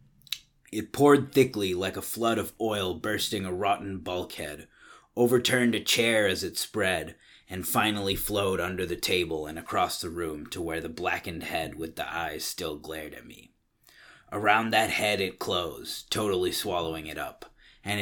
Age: 30-49